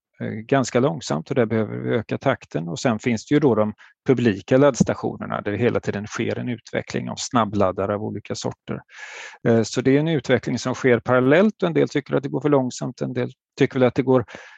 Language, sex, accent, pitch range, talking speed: Swedish, male, native, 110-145 Hz, 220 wpm